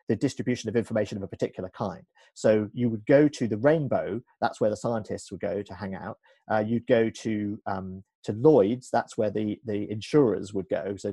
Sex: male